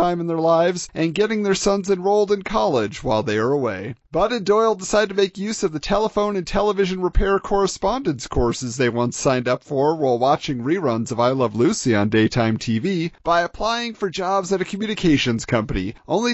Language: English